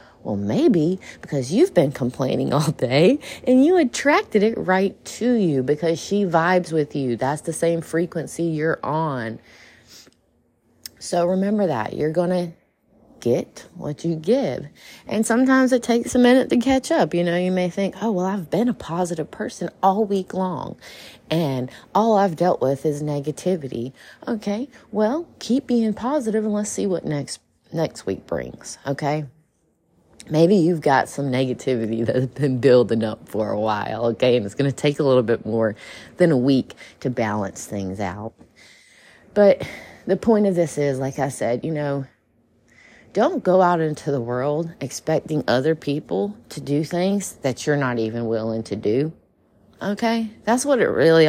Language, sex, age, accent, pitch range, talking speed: English, female, 30-49, American, 130-195 Hz, 170 wpm